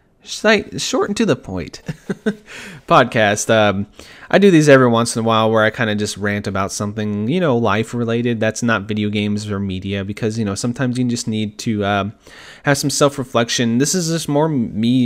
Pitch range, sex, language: 100-130 Hz, male, English